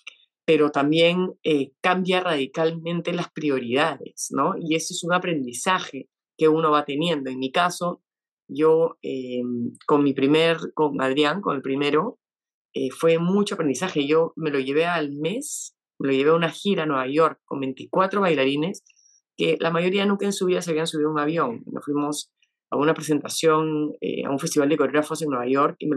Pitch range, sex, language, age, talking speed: 145-170 Hz, female, Spanish, 30-49, 185 wpm